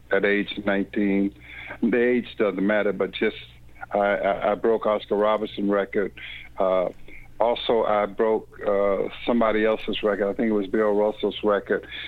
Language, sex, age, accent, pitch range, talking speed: English, male, 60-79, American, 100-110 Hz, 150 wpm